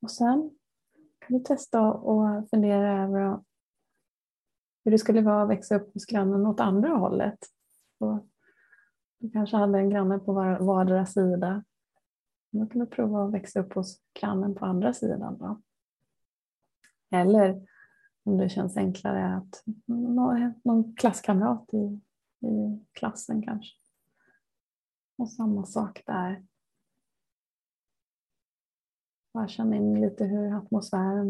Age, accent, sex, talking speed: 30-49, native, female, 125 wpm